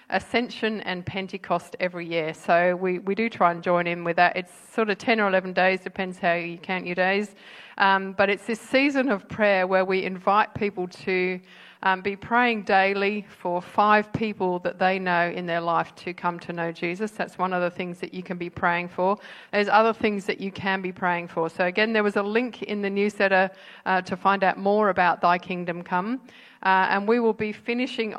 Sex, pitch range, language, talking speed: female, 180-205 Hz, English, 215 wpm